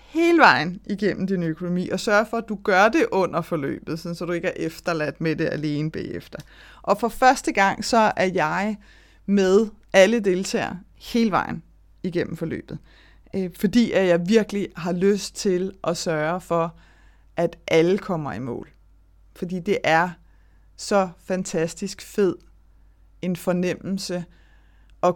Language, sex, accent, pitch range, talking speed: Danish, female, native, 160-195 Hz, 145 wpm